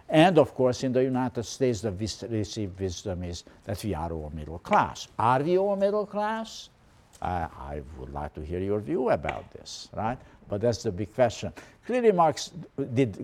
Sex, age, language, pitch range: male, 60-79, English, 95-135 Hz